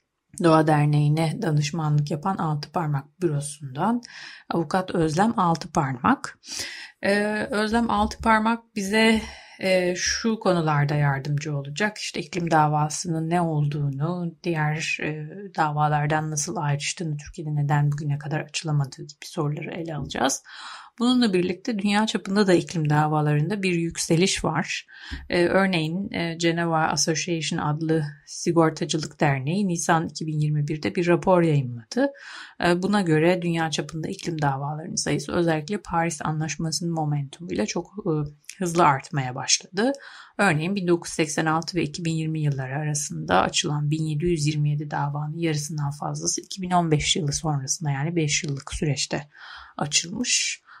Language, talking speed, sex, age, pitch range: Turkish, 115 wpm, female, 30-49, 150-180 Hz